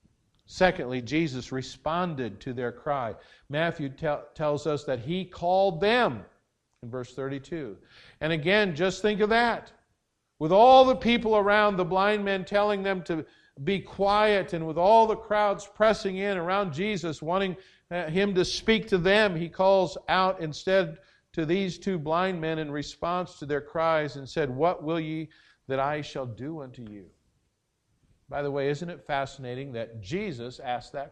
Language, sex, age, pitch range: English, male, 50-69, 145-195 Hz